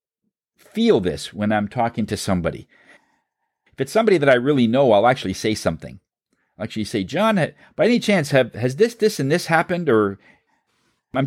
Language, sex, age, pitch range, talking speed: English, male, 50-69, 110-150 Hz, 180 wpm